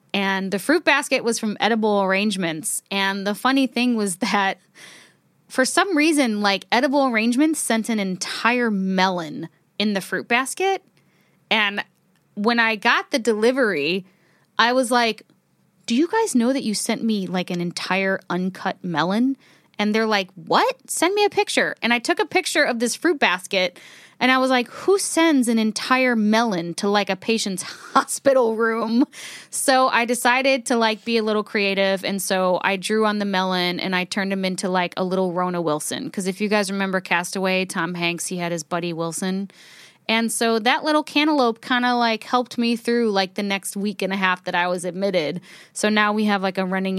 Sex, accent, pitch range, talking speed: female, American, 180-235 Hz, 190 wpm